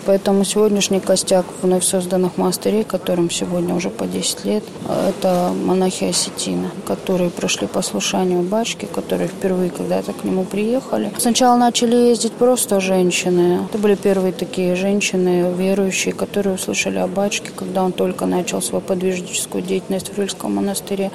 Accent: native